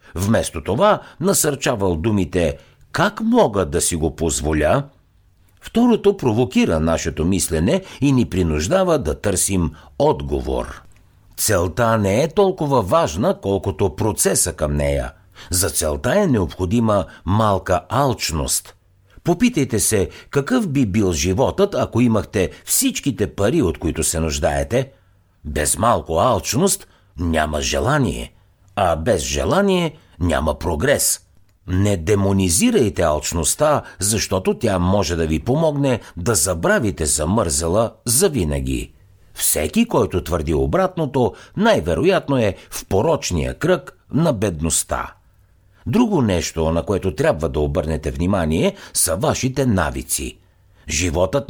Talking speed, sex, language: 110 wpm, male, Bulgarian